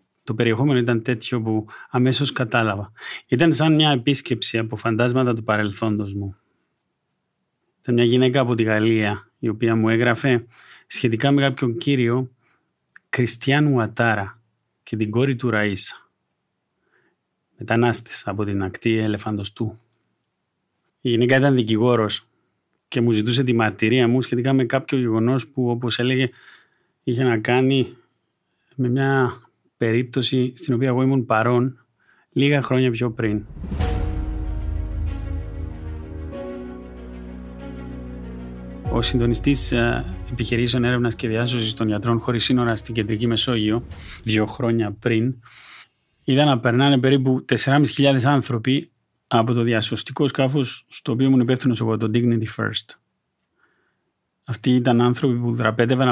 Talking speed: 120 wpm